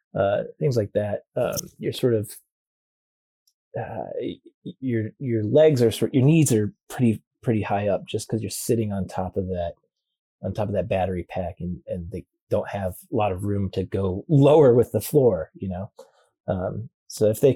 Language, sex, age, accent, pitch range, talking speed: English, male, 30-49, American, 100-120 Hz, 190 wpm